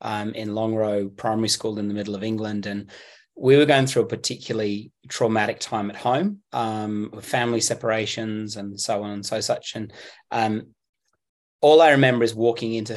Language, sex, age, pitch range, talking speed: English, male, 30-49, 105-115 Hz, 180 wpm